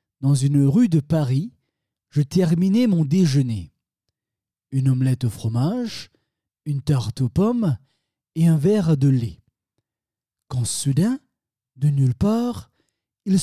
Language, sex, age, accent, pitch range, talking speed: French, male, 40-59, French, 120-170 Hz, 125 wpm